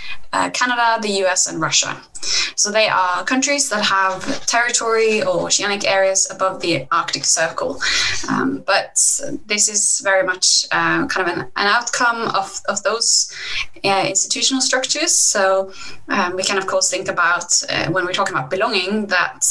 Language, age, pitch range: English, 10-29, 185-225 Hz